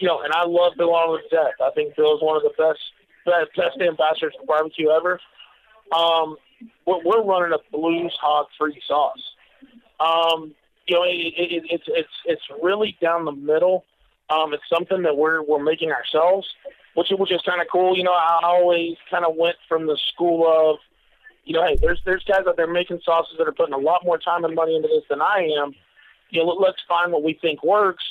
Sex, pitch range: male, 160-190 Hz